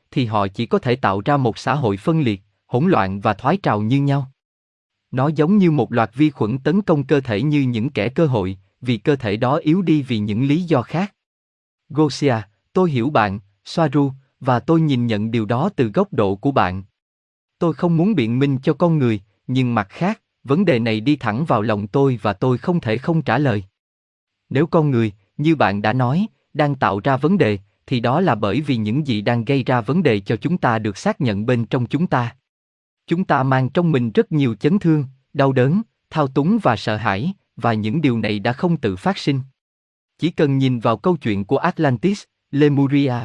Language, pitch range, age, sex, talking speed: Vietnamese, 110-155 Hz, 20-39, male, 215 wpm